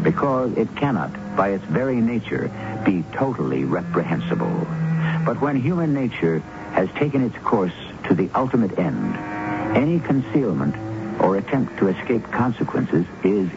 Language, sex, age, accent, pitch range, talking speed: English, male, 70-89, American, 95-145 Hz, 135 wpm